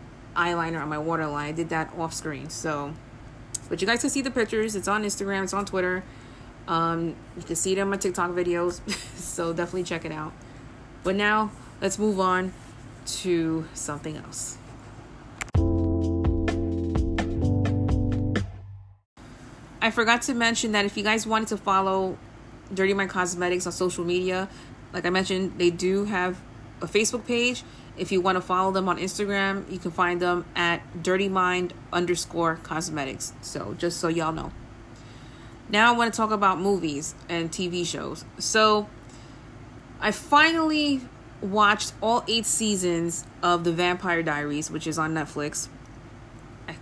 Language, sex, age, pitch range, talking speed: English, female, 30-49, 130-190 Hz, 150 wpm